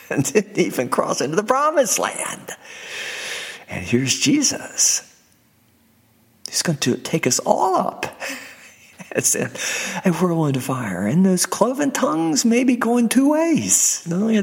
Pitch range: 165-265 Hz